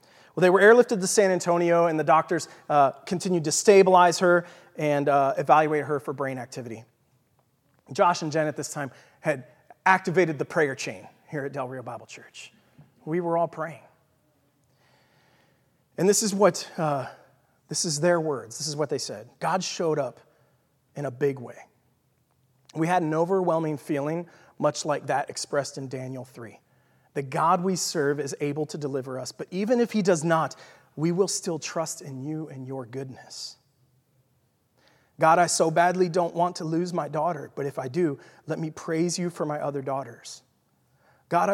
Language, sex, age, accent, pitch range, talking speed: English, male, 30-49, American, 135-170 Hz, 180 wpm